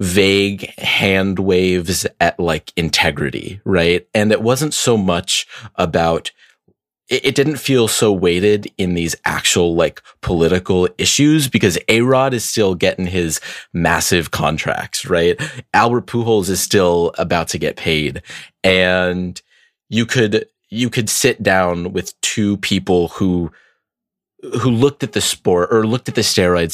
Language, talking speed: English, 140 wpm